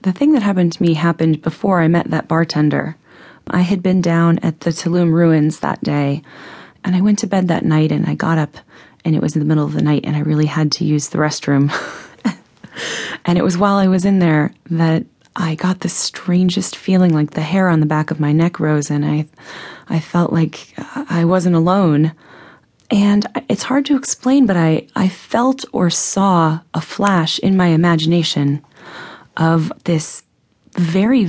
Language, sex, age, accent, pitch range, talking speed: English, female, 30-49, American, 155-185 Hz, 195 wpm